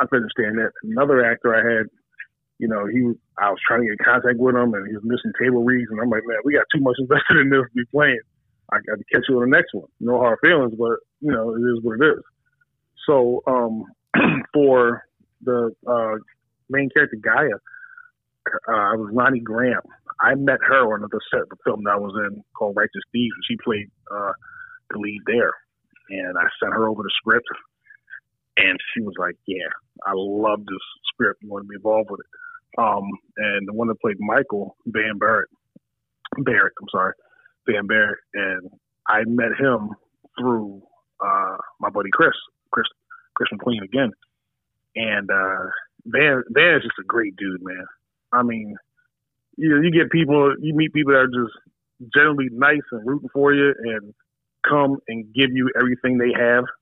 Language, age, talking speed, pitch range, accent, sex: English, 30-49, 195 wpm, 110-145 Hz, American, male